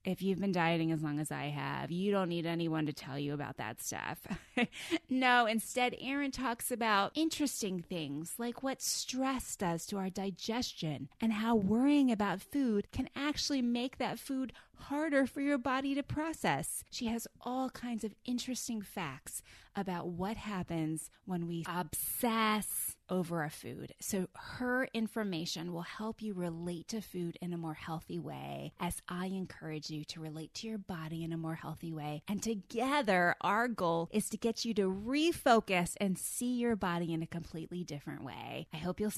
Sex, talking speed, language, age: female, 175 wpm, English, 20-39